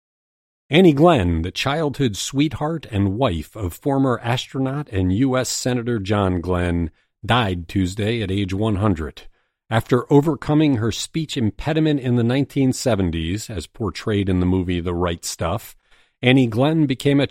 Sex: male